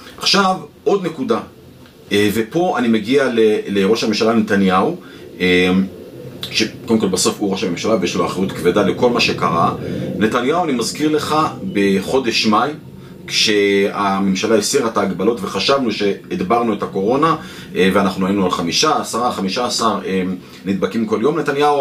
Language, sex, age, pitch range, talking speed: Hebrew, male, 30-49, 95-145 Hz, 130 wpm